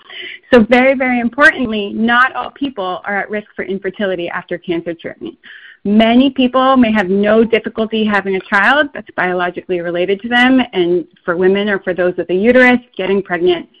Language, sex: English, female